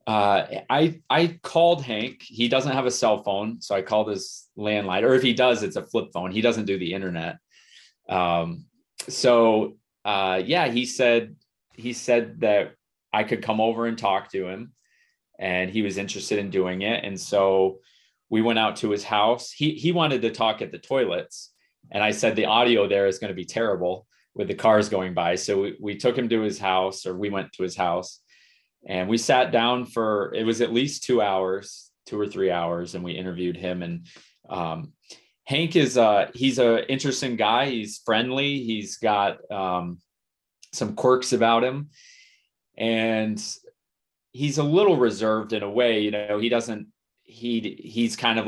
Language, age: English, 30-49